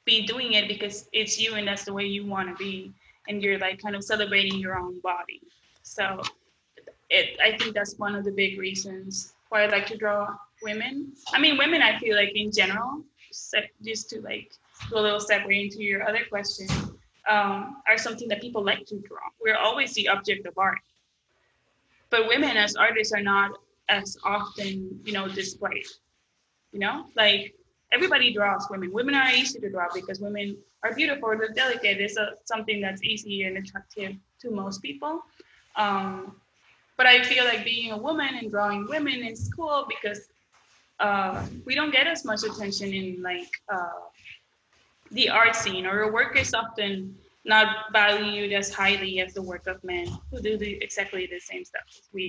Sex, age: female, 20-39